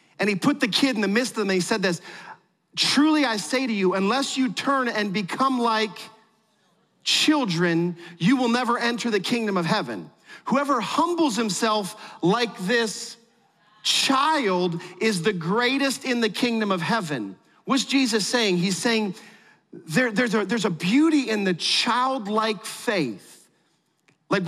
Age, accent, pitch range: 40-59, American, 190-245 Hz